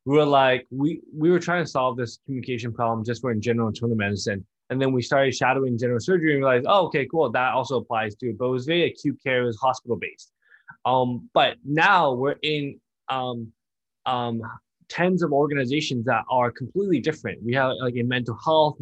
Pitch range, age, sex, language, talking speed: 120-145 Hz, 20-39, male, English, 200 wpm